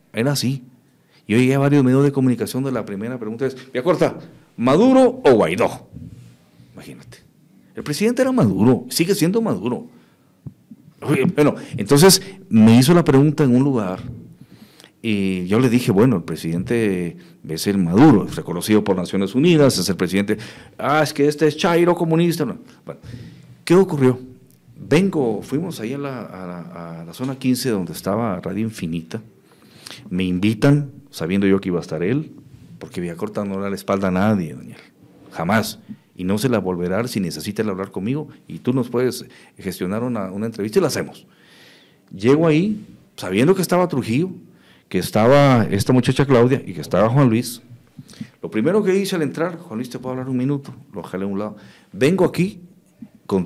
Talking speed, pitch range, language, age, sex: 175 wpm, 100-155 Hz, Spanish, 50-69, male